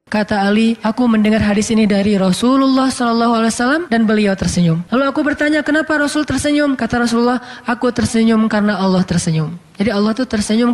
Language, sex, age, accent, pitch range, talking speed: Indonesian, female, 20-39, native, 205-255 Hz, 160 wpm